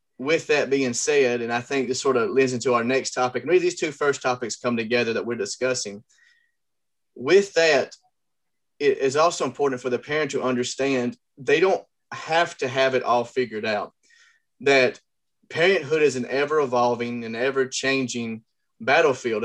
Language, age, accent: English, 30-49, American